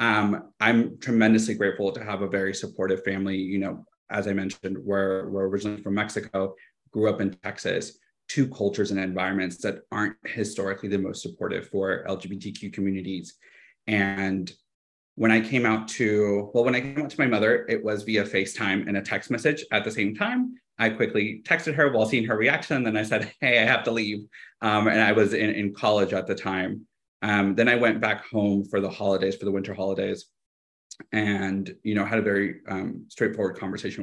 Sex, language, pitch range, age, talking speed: male, English, 95-110 Hz, 30-49, 195 wpm